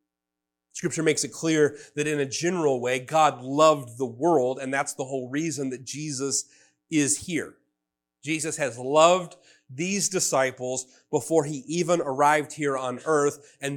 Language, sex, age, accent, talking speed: English, male, 30-49, American, 155 wpm